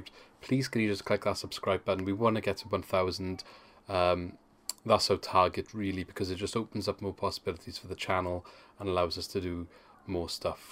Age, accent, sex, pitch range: 30-49, British, male, 90-105 Hz